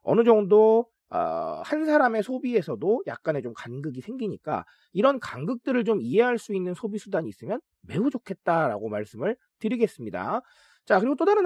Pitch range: 160-255 Hz